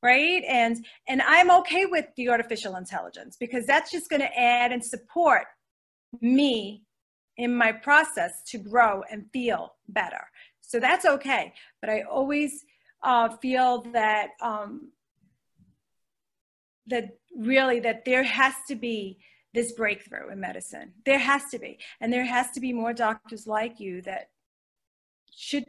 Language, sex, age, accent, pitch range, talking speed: English, female, 40-59, American, 225-275 Hz, 140 wpm